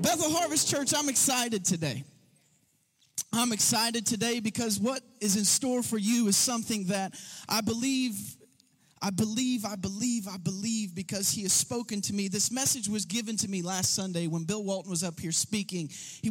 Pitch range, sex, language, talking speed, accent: 205-275 Hz, male, English, 180 wpm, American